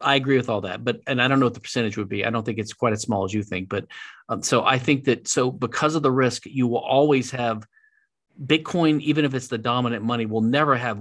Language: English